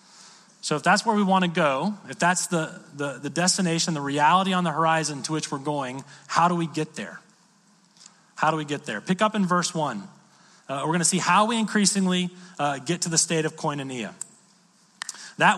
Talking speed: 210 wpm